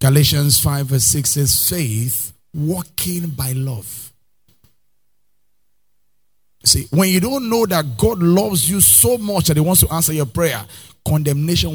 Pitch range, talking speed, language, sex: 110-155 Hz, 145 wpm, English, male